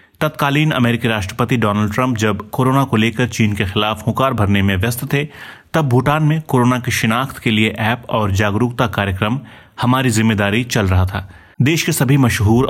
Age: 30-49